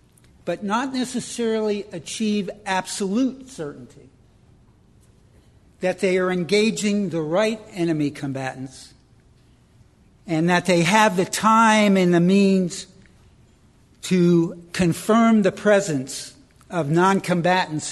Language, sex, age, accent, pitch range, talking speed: English, male, 60-79, American, 155-200 Hz, 95 wpm